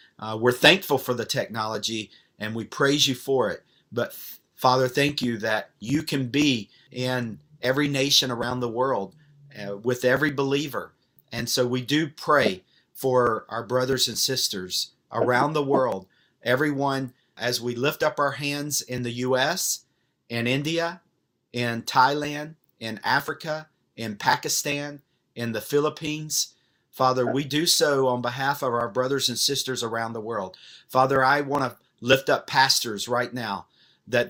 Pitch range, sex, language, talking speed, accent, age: 125-145 Hz, male, English, 155 wpm, American, 50-69